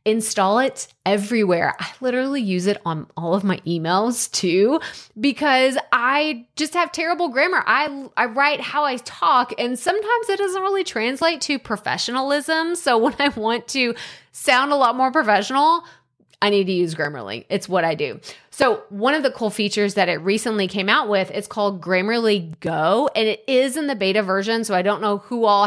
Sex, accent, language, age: female, American, English, 20-39